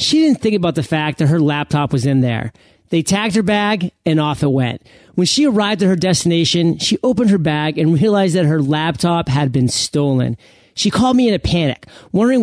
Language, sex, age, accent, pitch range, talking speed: English, male, 30-49, American, 150-205 Hz, 215 wpm